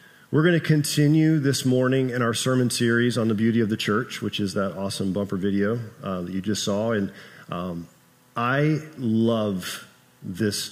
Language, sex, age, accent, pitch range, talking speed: English, male, 40-59, American, 115-140 Hz, 180 wpm